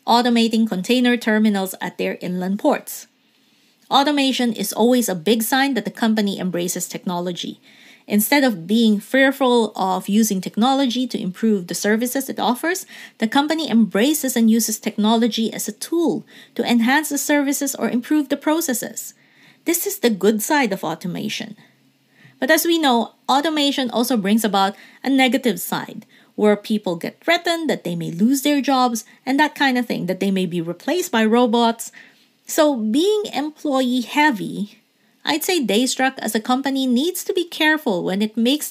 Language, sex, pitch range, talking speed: English, female, 210-270 Hz, 165 wpm